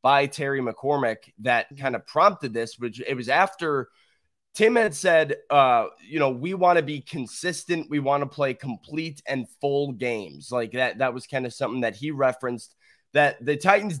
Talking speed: 190 wpm